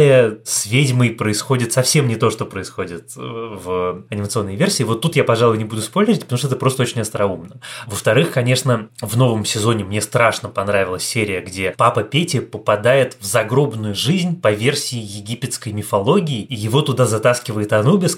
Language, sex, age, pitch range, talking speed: Russian, male, 20-39, 105-130 Hz, 160 wpm